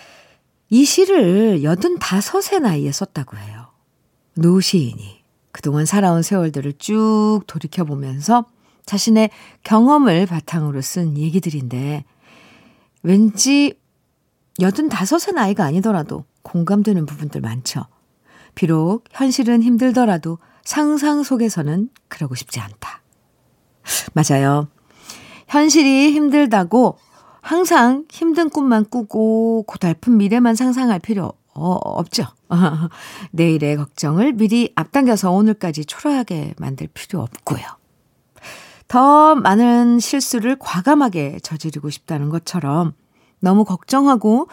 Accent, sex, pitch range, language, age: native, female, 155-235 Hz, Korean, 50-69